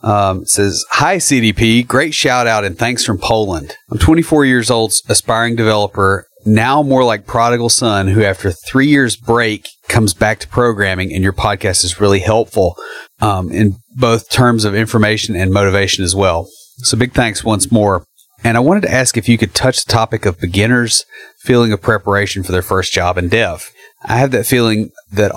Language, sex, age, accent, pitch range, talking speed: English, male, 30-49, American, 95-120 Hz, 190 wpm